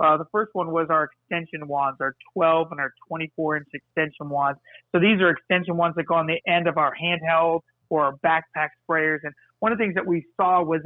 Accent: American